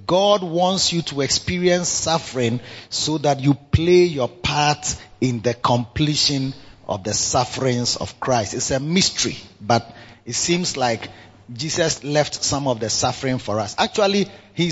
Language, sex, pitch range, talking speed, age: English, male, 110-150 Hz, 150 wpm, 30-49